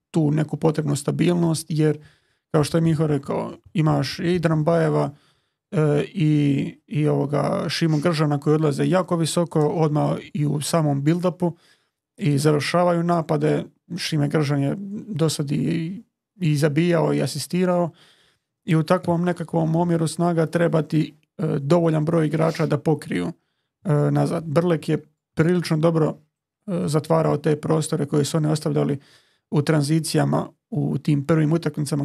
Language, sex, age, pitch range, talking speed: Croatian, male, 30-49, 150-165 Hz, 135 wpm